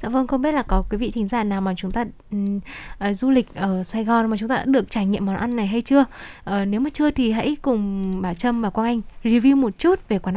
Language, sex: Vietnamese, female